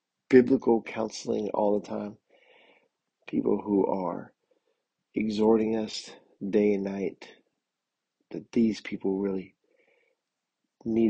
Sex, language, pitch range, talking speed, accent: male, English, 100-120 Hz, 95 wpm, American